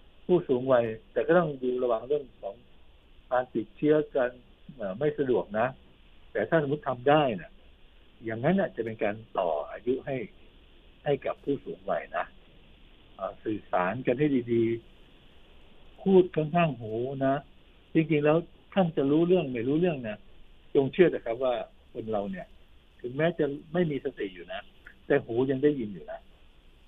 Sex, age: male, 60-79